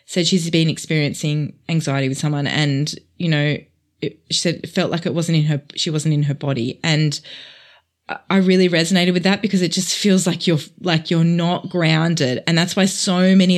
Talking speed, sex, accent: 200 wpm, female, Australian